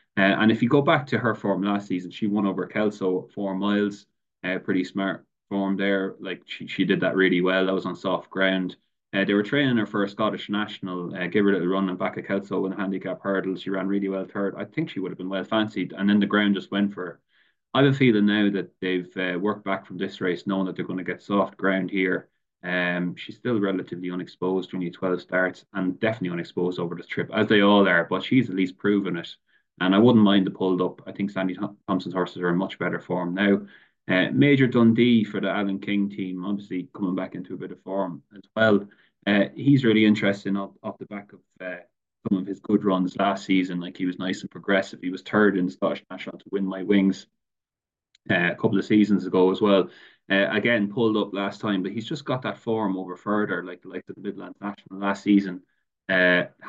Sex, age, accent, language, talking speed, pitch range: male, 20-39, Irish, English, 235 wpm, 90-105 Hz